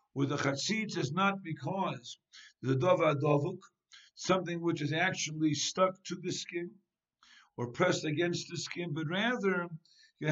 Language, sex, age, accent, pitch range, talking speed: English, male, 60-79, American, 150-190 Hz, 145 wpm